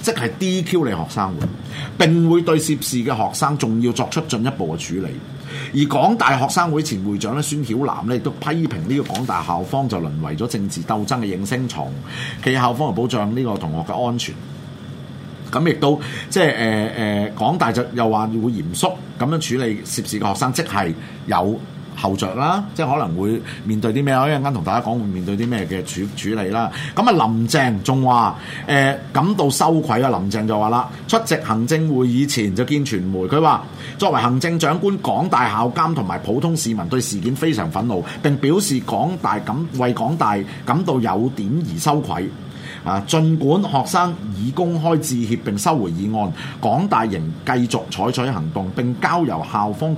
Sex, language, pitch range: male, Chinese, 110-150 Hz